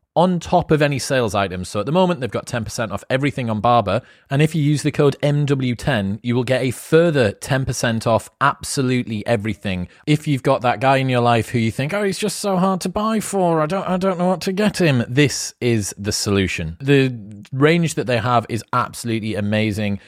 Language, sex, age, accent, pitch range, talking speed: English, male, 30-49, British, 105-140 Hz, 215 wpm